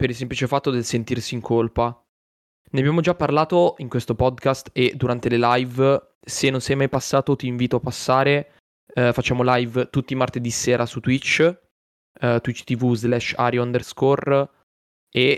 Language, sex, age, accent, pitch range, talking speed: Italian, male, 20-39, native, 120-135 Hz, 160 wpm